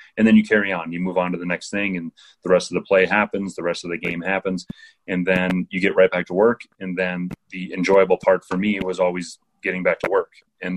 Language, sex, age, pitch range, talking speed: English, male, 30-49, 90-100 Hz, 260 wpm